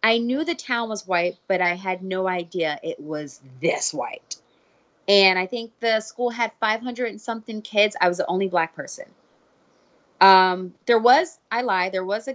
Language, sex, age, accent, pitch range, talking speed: English, female, 20-39, American, 170-205 Hz, 190 wpm